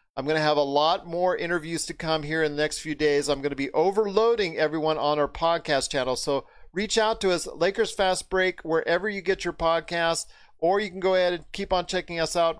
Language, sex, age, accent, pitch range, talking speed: English, male, 40-59, American, 160-195 Hz, 240 wpm